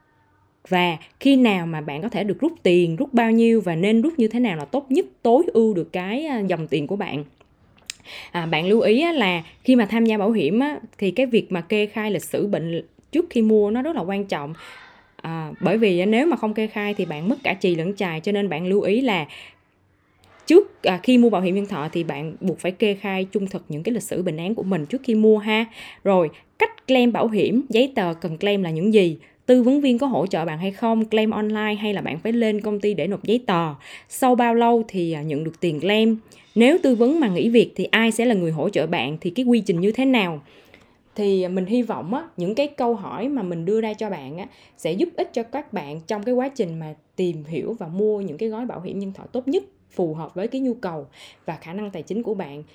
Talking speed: 255 wpm